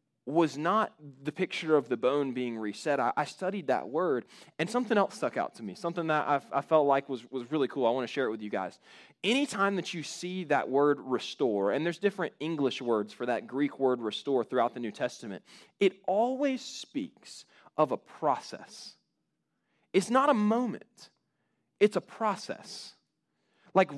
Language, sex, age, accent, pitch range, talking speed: English, male, 20-39, American, 140-205 Hz, 180 wpm